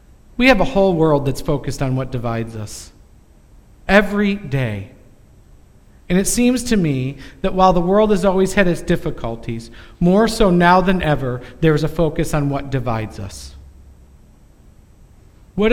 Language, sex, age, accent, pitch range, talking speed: English, male, 50-69, American, 135-175 Hz, 155 wpm